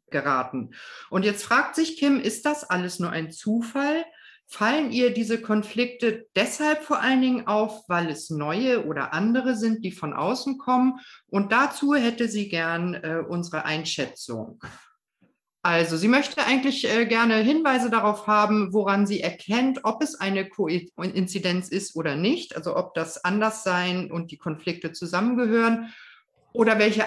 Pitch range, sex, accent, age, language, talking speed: 180-245 Hz, female, German, 50-69, German, 155 wpm